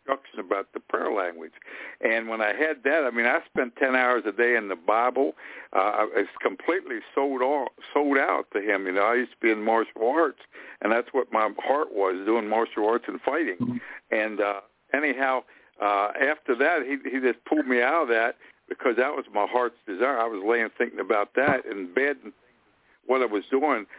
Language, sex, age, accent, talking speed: English, male, 60-79, American, 210 wpm